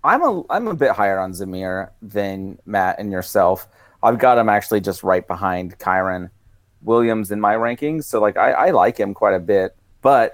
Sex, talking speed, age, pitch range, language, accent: male, 195 wpm, 30-49, 95-110 Hz, English, American